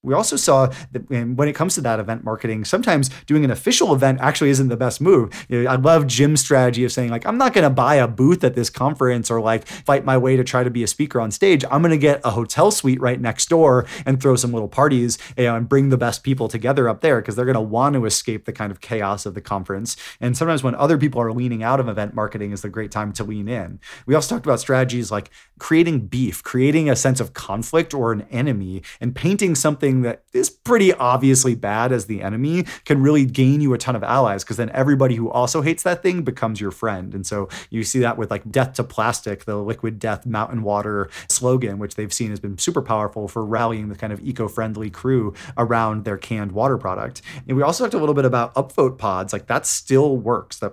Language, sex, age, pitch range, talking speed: English, male, 30-49, 110-135 Hz, 240 wpm